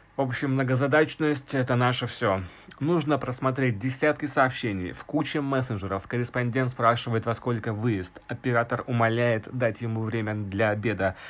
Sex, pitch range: male, 110-130 Hz